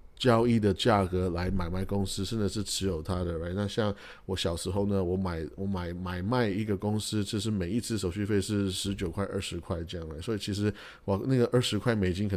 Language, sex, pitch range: Chinese, male, 95-120 Hz